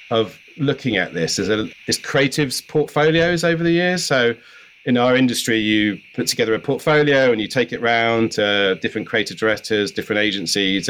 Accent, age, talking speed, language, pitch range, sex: British, 40-59, 170 wpm, English, 105-125 Hz, male